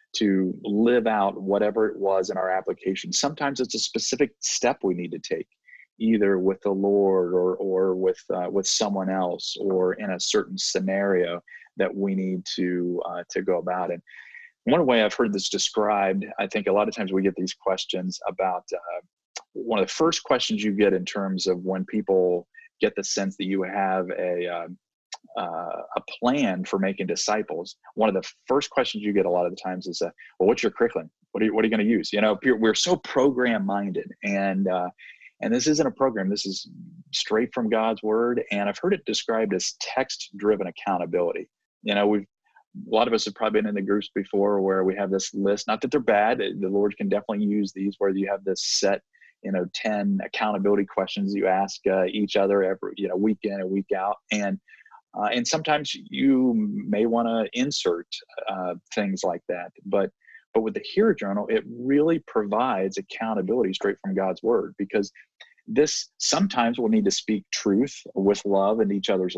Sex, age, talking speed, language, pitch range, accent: male, 30-49, 200 wpm, English, 95-115 Hz, American